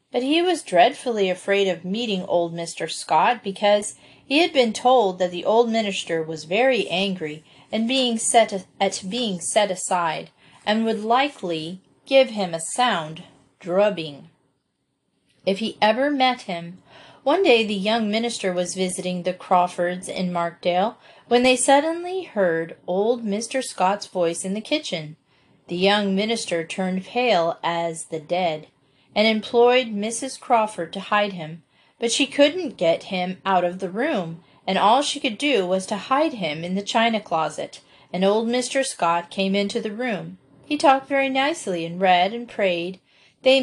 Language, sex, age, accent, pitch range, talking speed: English, female, 30-49, American, 175-240 Hz, 160 wpm